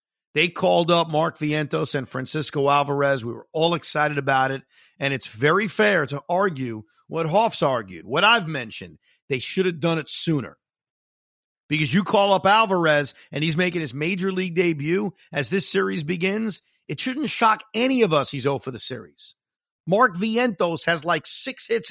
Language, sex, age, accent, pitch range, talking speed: English, male, 50-69, American, 145-195 Hz, 180 wpm